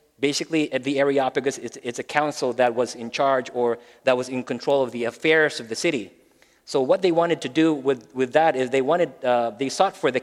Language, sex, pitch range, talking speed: English, male, 125-155 Hz, 235 wpm